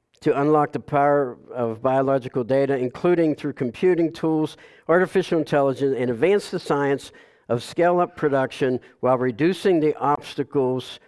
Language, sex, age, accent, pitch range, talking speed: English, male, 50-69, American, 135-155 Hz, 130 wpm